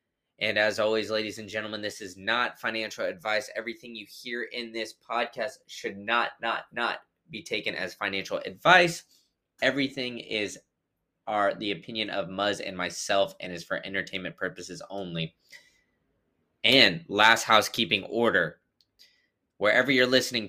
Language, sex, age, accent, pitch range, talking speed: English, male, 20-39, American, 100-120 Hz, 140 wpm